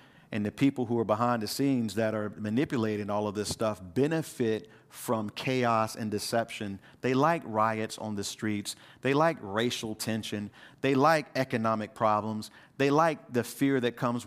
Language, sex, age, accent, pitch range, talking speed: English, male, 40-59, American, 110-145 Hz, 170 wpm